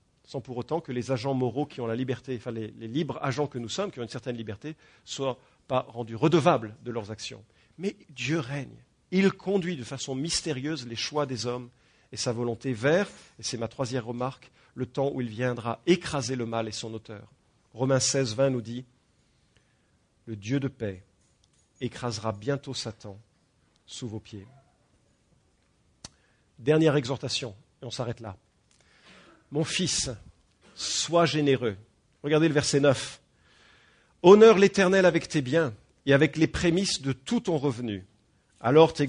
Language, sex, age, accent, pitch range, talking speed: English, male, 40-59, French, 120-160 Hz, 170 wpm